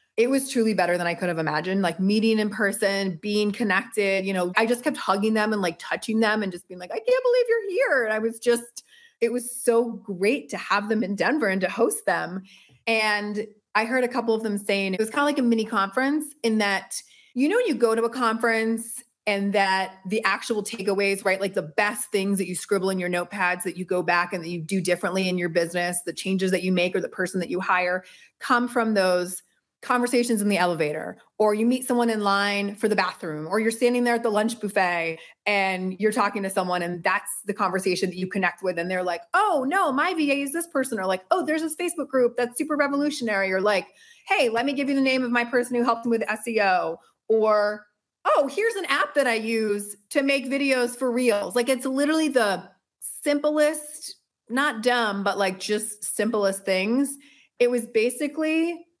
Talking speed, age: 220 wpm, 30-49